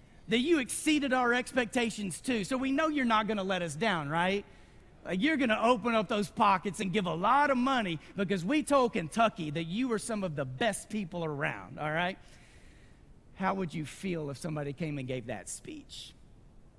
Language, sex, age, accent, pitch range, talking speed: English, male, 40-59, American, 155-225 Hz, 195 wpm